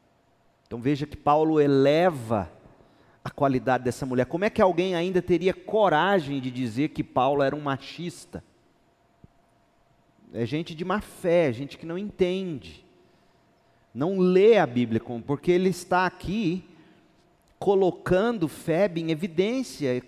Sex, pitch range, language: male, 130-185 Hz, Portuguese